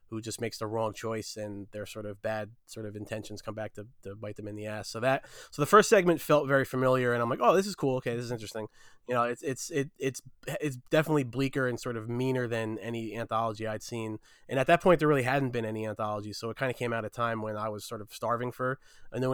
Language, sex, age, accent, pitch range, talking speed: English, male, 20-39, American, 115-135 Hz, 275 wpm